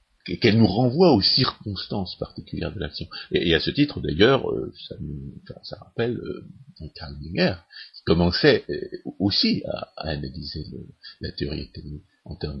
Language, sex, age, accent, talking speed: French, male, 50-69, French, 170 wpm